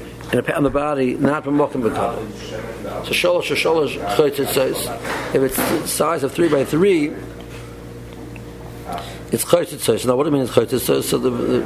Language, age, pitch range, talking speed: English, 60-79, 115-150 Hz, 175 wpm